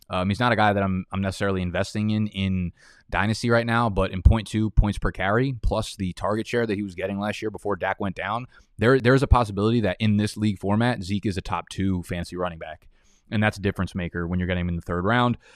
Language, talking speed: English, 255 wpm